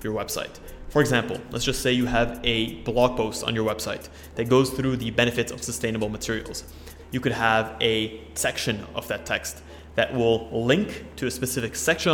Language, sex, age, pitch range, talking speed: English, male, 20-39, 110-130 Hz, 190 wpm